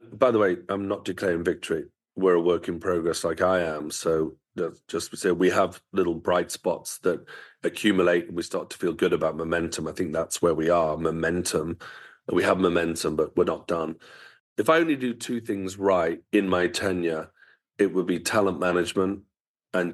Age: 30-49